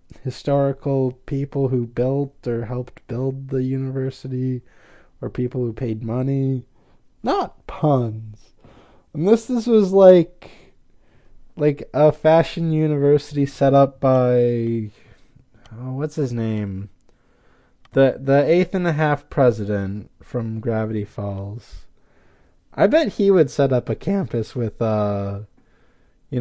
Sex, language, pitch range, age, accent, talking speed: male, English, 110-170 Hz, 20-39, American, 120 wpm